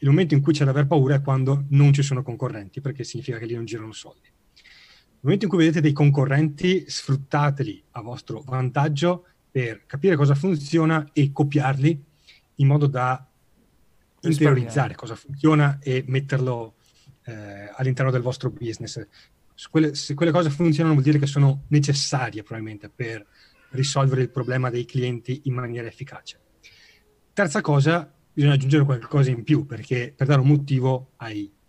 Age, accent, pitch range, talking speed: 30-49, native, 125-150 Hz, 155 wpm